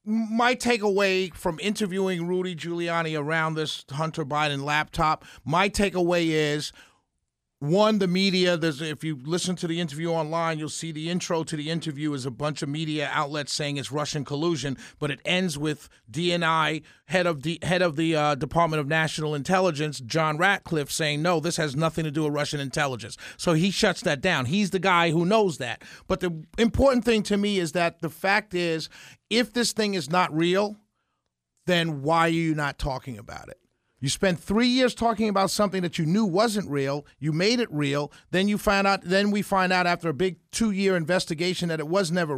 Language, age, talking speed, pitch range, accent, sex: English, 40-59, 195 wpm, 155-190 Hz, American, male